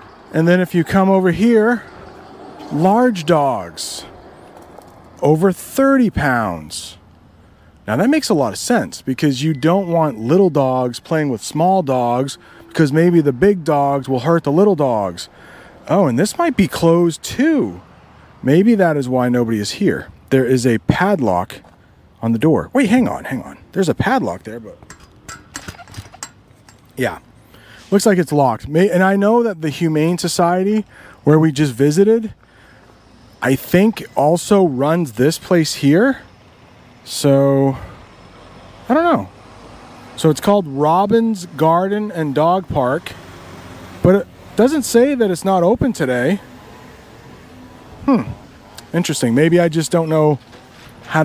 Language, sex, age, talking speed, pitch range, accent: English, male, 40-59, 145 wpm, 125-190 Hz, American